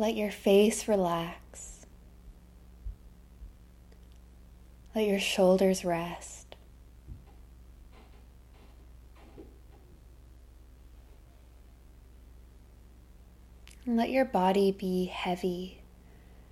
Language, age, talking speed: English, 20-39, 45 wpm